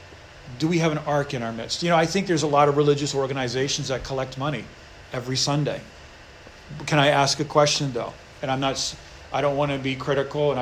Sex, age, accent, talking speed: male, 40-59, American, 215 wpm